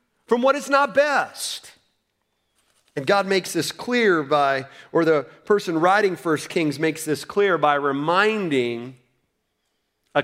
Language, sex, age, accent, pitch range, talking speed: English, male, 40-59, American, 140-190 Hz, 135 wpm